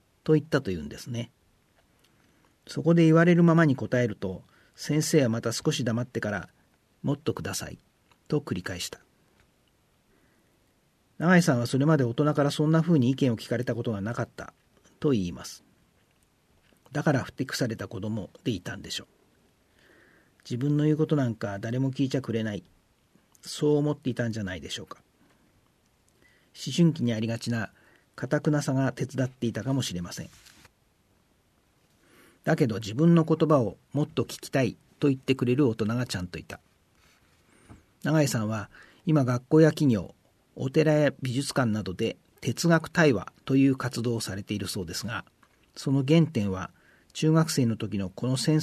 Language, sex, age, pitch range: Japanese, male, 40-59, 110-150 Hz